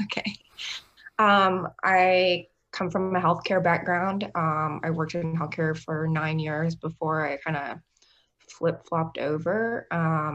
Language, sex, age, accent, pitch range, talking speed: English, female, 20-39, American, 160-180 Hz, 135 wpm